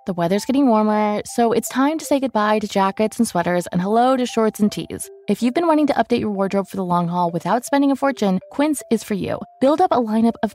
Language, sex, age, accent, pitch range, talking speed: English, female, 20-39, American, 185-255 Hz, 255 wpm